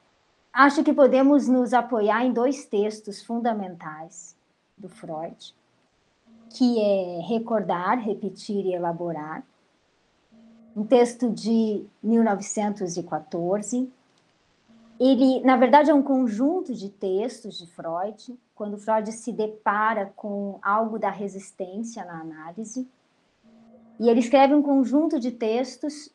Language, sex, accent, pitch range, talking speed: Portuguese, male, Brazilian, 205-260 Hz, 110 wpm